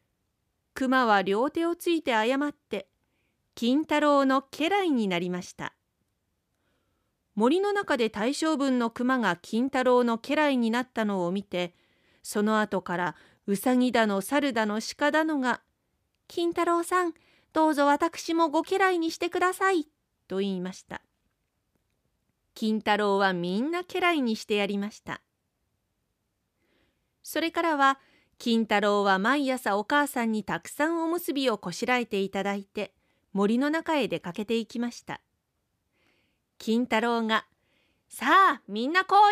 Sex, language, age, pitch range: female, Japanese, 40-59, 200-290 Hz